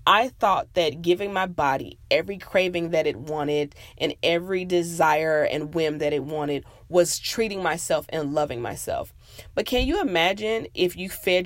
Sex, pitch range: female, 150-190 Hz